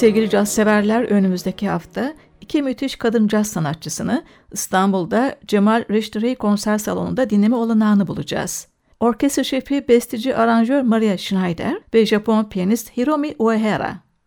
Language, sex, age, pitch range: Turkish, female, 60-79, 205-245 Hz